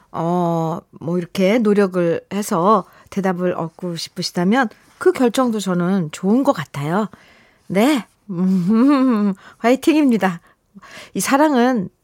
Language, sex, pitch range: Korean, female, 180-250 Hz